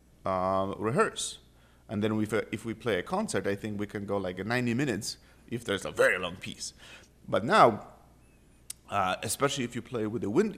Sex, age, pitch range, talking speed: male, 30-49, 100-125 Hz, 195 wpm